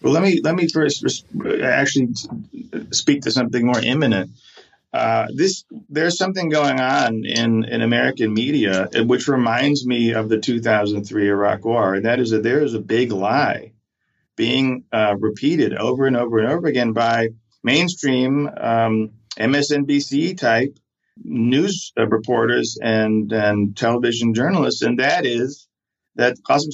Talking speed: 155 wpm